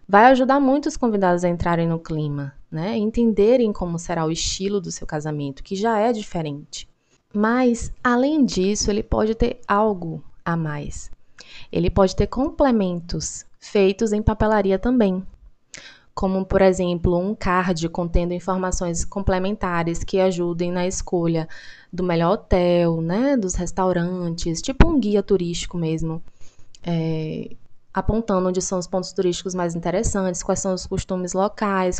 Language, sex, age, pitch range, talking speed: Portuguese, female, 20-39, 170-210 Hz, 145 wpm